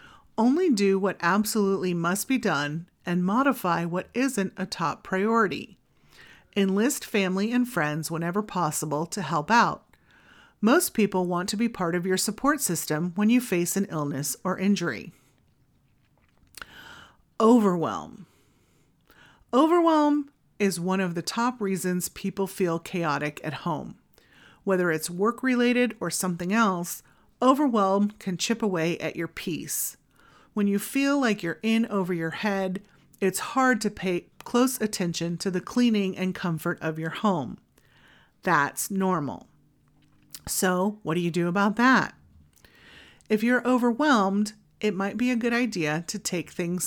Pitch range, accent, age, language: 175-225 Hz, American, 40-59, English